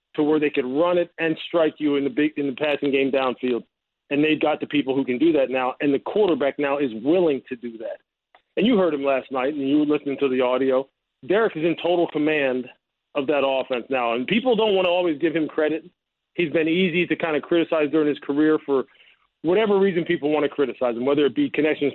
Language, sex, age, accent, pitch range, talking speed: English, male, 40-59, American, 140-175 Hz, 245 wpm